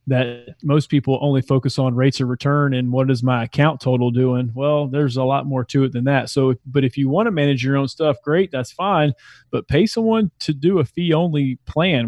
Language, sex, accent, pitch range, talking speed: English, male, American, 125-140 Hz, 235 wpm